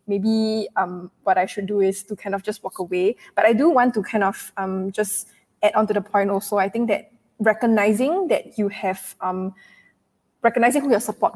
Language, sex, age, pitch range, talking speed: English, female, 10-29, 190-210 Hz, 210 wpm